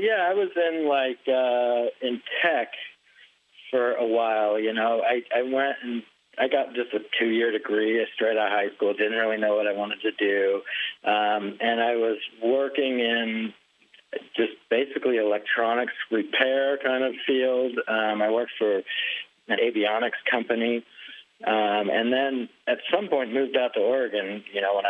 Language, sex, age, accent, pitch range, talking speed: English, male, 40-59, American, 105-130 Hz, 170 wpm